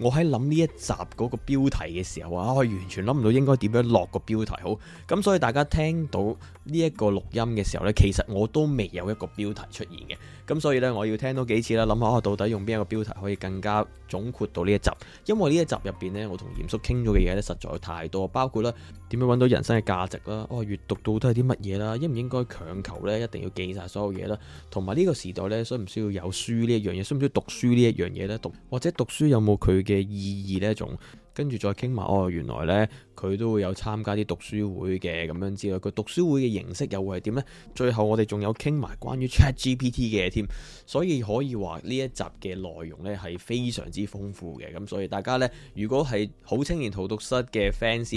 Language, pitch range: Chinese, 95-125 Hz